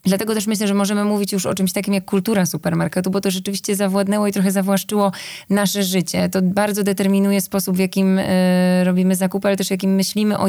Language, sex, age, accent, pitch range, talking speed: Polish, female, 20-39, native, 185-200 Hz, 200 wpm